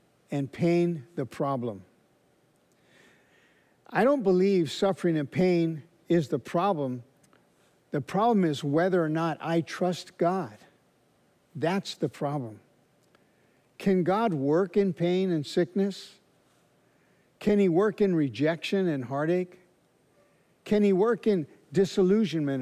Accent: American